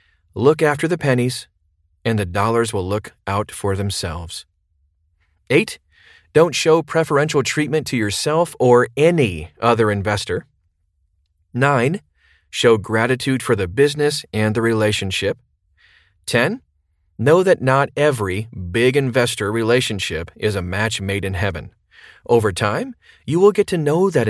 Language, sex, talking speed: English, male, 135 wpm